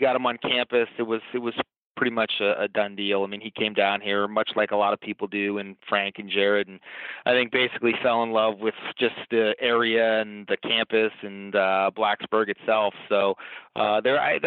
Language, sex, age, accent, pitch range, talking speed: English, male, 30-49, American, 105-125 Hz, 220 wpm